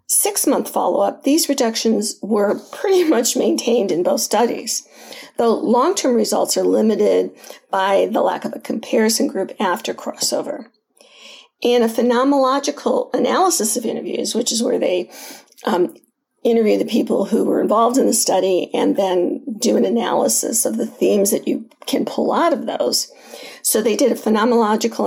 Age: 50-69